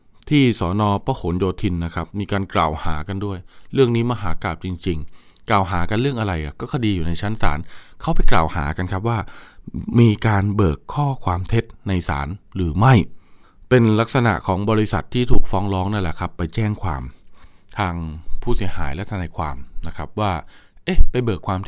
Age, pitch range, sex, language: 20-39, 90-120 Hz, male, Thai